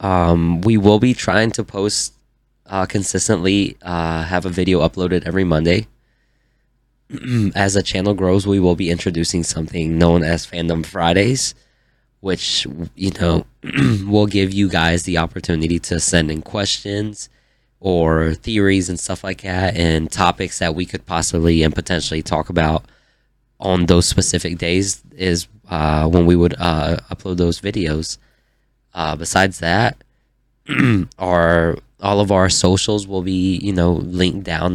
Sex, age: male, 20-39